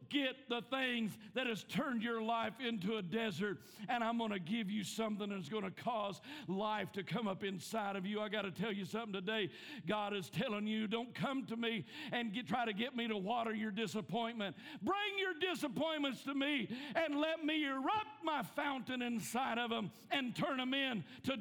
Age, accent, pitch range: 50-69, American, 210-290 Hz